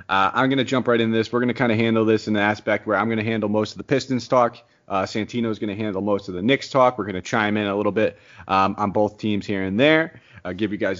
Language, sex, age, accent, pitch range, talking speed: English, male, 30-49, American, 100-115 Hz, 315 wpm